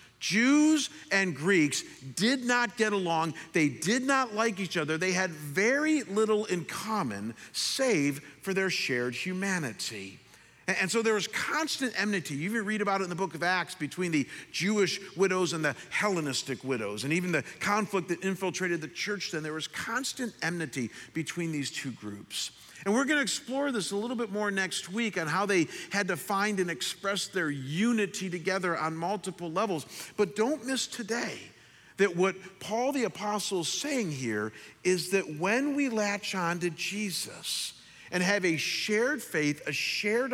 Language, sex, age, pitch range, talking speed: English, male, 50-69, 160-215 Hz, 175 wpm